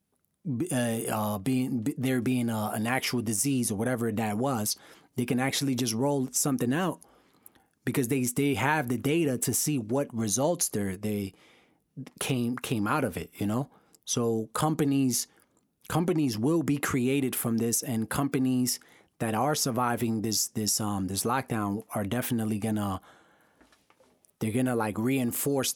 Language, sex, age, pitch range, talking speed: English, male, 30-49, 110-130 Hz, 150 wpm